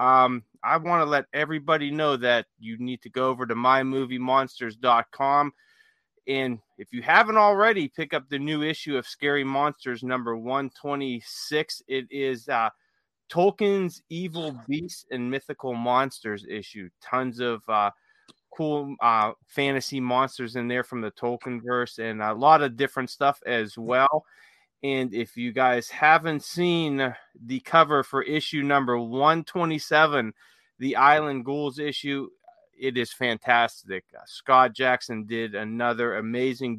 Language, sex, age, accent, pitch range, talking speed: English, male, 30-49, American, 120-150 Hz, 135 wpm